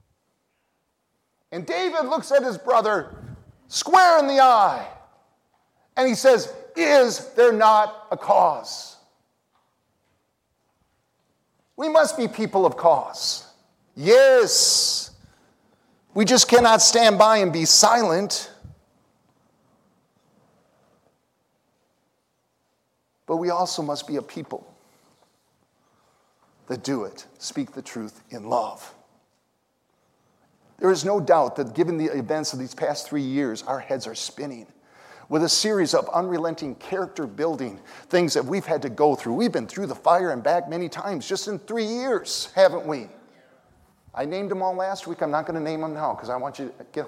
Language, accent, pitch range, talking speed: English, American, 140-225 Hz, 145 wpm